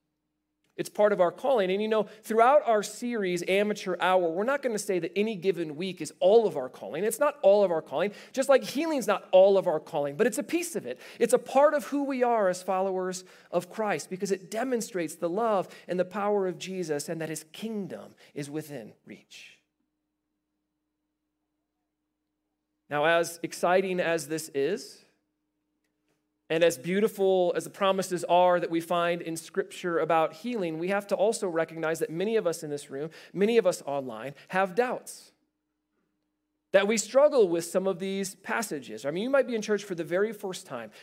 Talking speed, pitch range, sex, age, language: 195 wpm, 160-210 Hz, male, 40-59, English